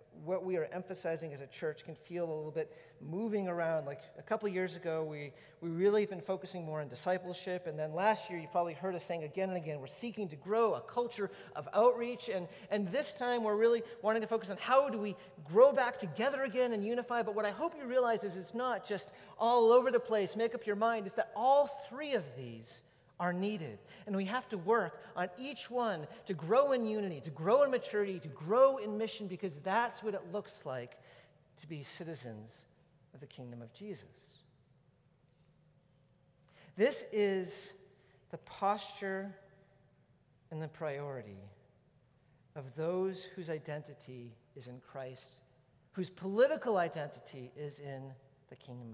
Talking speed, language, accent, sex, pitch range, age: 180 wpm, English, American, male, 145-210 Hz, 40-59